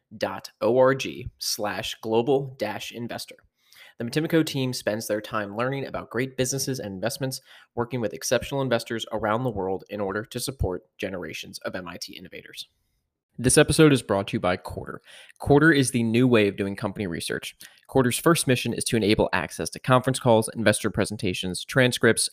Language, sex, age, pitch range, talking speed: English, male, 20-39, 105-130 Hz, 170 wpm